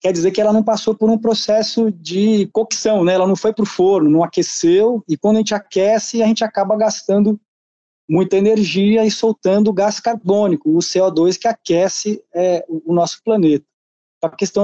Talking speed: 180 wpm